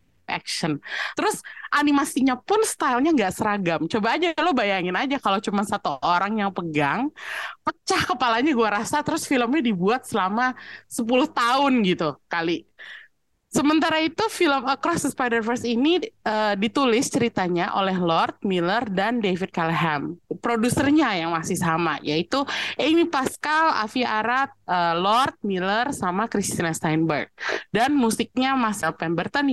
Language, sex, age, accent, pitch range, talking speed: Indonesian, female, 20-39, native, 185-275 Hz, 130 wpm